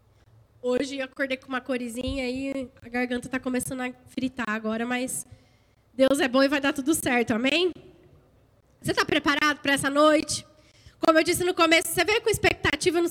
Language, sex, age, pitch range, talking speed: Portuguese, female, 10-29, 275-335 Hz, 185 wpm